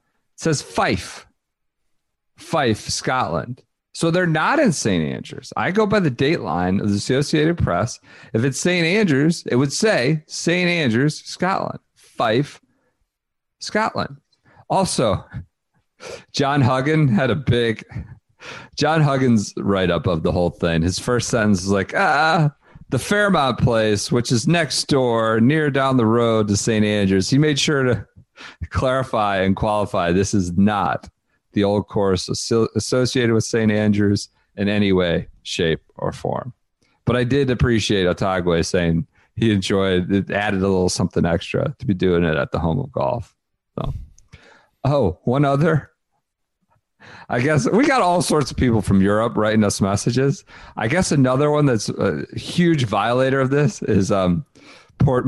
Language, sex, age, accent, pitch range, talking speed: English, male, 40-59, American, 100-140 Hz, 155 wpm